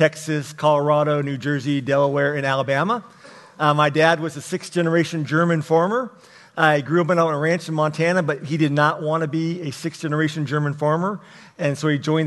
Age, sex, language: 40-59, male, English